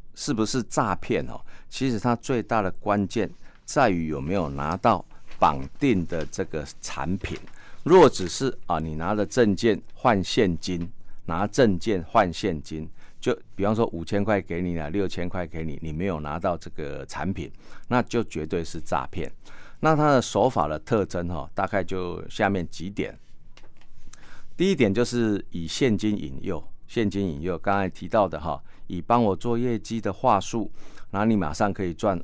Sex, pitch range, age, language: male, 85-115 Hz, 50-69, Chinese